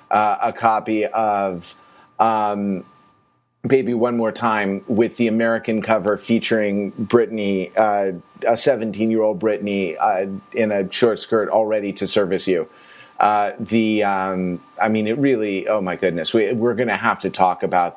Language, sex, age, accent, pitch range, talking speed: English, male, 30-49, American, 105-155 Hz, 155 wpm